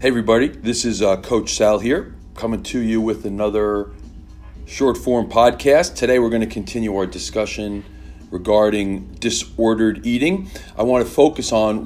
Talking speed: 140 wpm